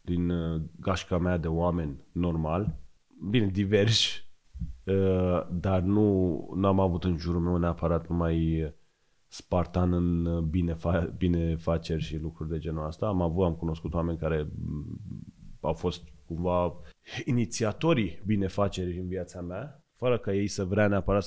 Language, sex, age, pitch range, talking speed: Romanian, male, 30-49, 90-110 Hz, 135 wpm